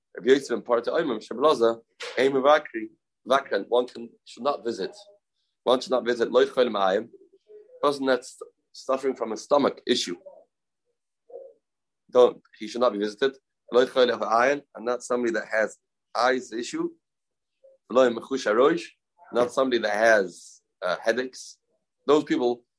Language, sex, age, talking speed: English, male, 30-49, 110 wpm